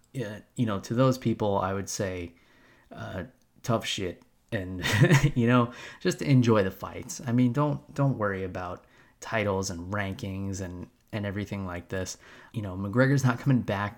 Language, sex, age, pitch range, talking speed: English, male, 20-39, 95-120 Hz, 165 wpm